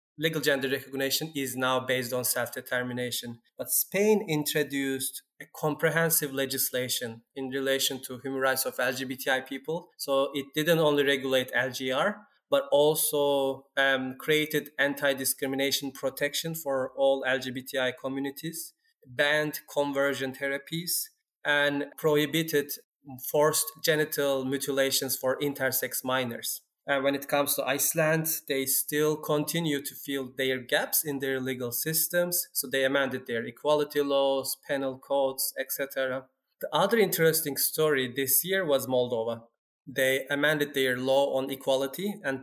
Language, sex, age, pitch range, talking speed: English, male, 20-39, 135-150 Hz, 130 wpm